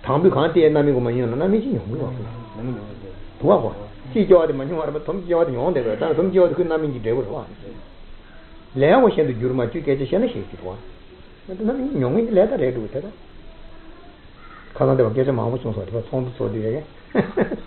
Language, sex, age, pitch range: Italian, male, 50-69, 120-165 Hz